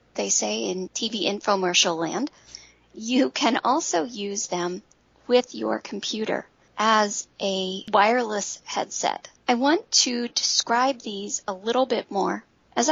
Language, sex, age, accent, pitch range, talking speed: English, female, 40-59, American, 205-270 Hz, 130 wpm